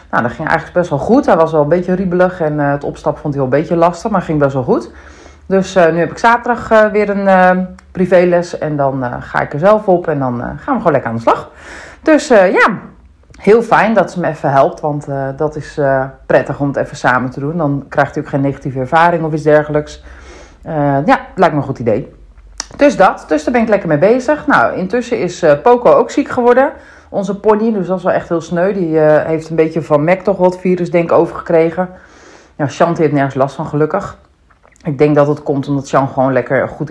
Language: Dutch